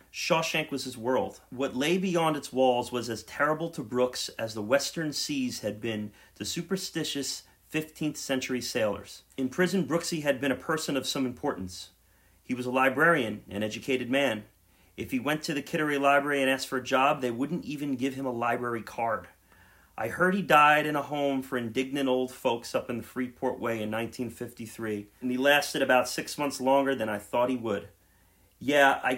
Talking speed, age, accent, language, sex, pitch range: 195 wpm, 40-59, American, English, male, 115-155 Hz